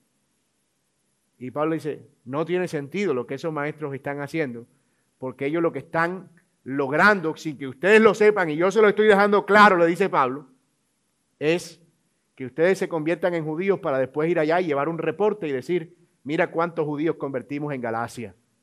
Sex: male